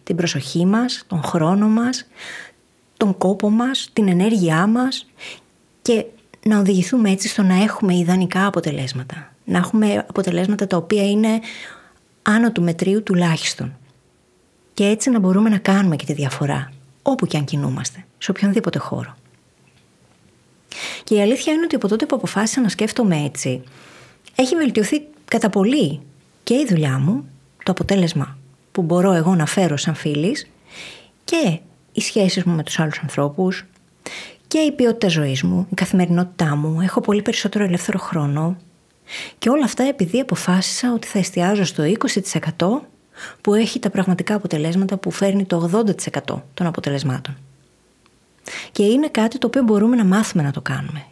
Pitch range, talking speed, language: 160-215 Hz, 150 wpm, Greek